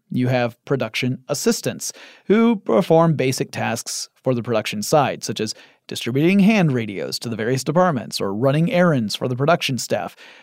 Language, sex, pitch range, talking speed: English, male, 125-165 Hz, 160 wpm